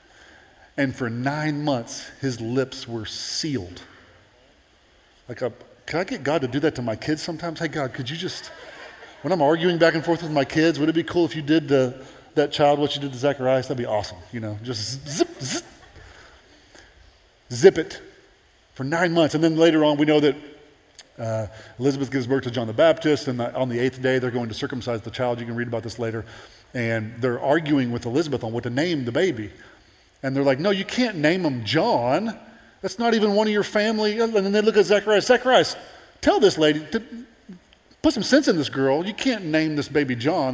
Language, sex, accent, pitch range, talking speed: English, male, American, 120-165 Hz, 215 wpm